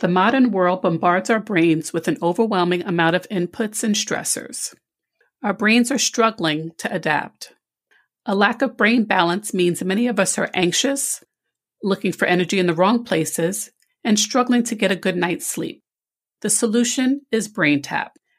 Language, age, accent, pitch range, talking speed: English, 40-59, American, 175-240 Hz, 165 wpm